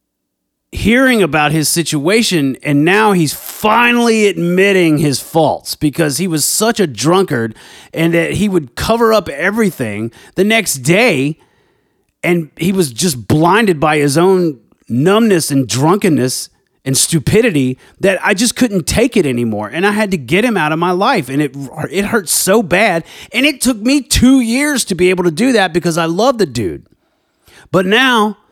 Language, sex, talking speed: English, male, 175 wpm